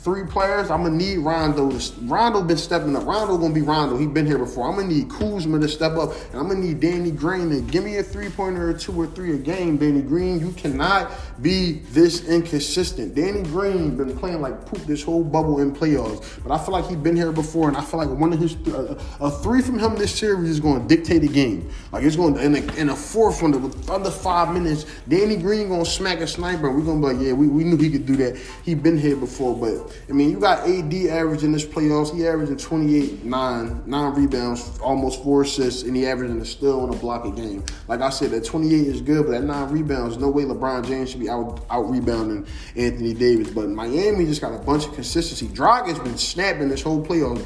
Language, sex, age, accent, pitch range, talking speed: English, male, 20-39, American, 140-170 Hz, 250 wpm